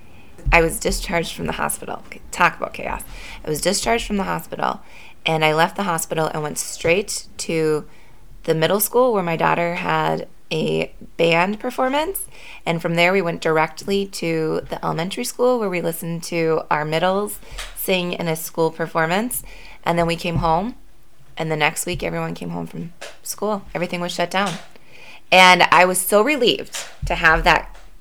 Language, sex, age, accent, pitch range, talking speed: English, female, 20-39, American, 160-205 Hz, 175 wpm